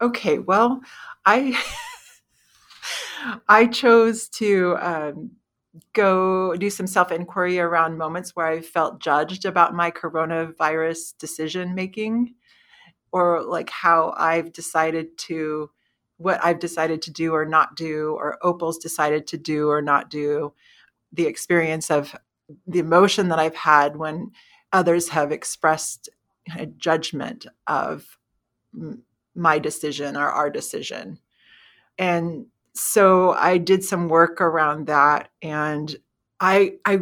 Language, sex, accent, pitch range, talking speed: English, female, American, 160-210 Hz, 120 wpm